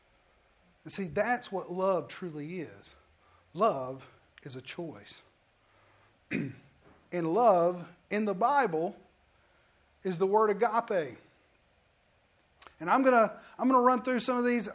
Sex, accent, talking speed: male, American, 130 wpm